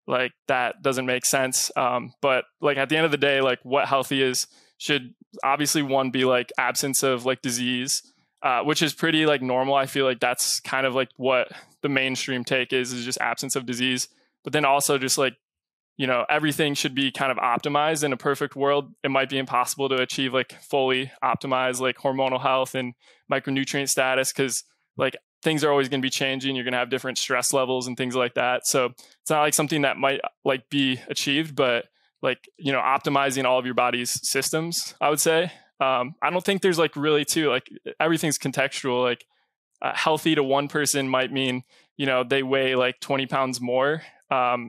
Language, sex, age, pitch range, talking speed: English, male, 20-39, 130-145 Hz, 205 wpm